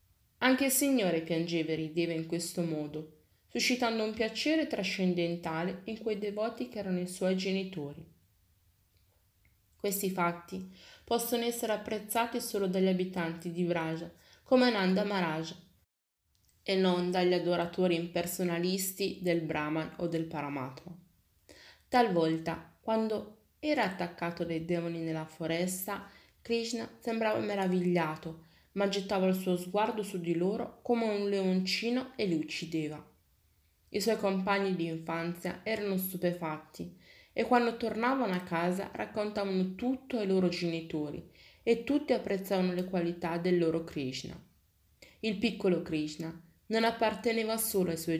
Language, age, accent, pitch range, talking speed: Italian, 20-39, native, 165-215 Hz, 125 wpm